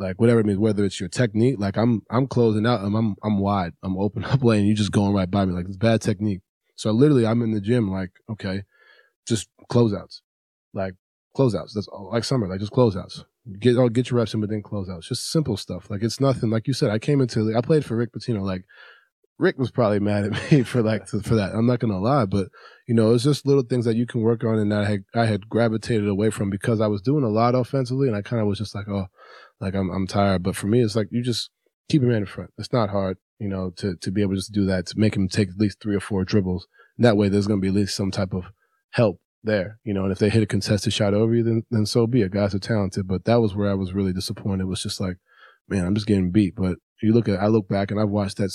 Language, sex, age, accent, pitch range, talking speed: English, male, 20-39, American, 95-115 Hz, 280 wpm